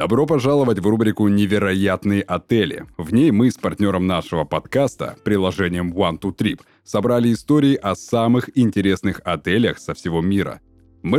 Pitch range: 95-125 Hz